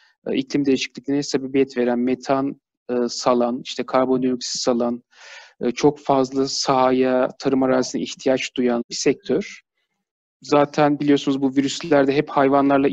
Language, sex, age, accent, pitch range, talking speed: Turkish, male, 40-59, native, 130-155 Hz, 120 wpm